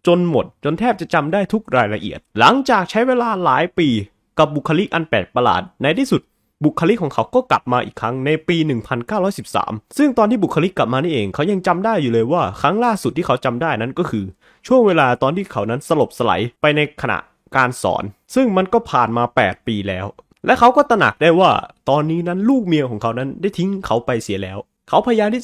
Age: 20-39